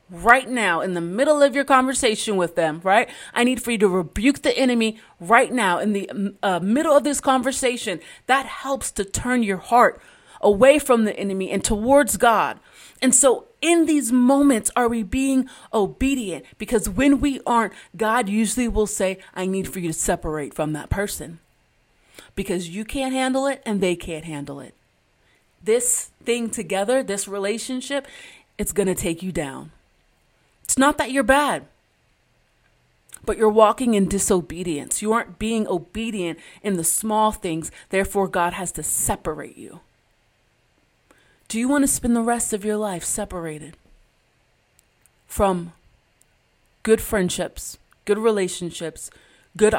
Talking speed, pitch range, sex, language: 155 wpm, 180-250 Hz, female, English